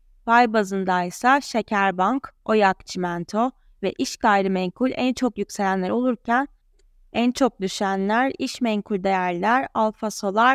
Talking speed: 120 wpm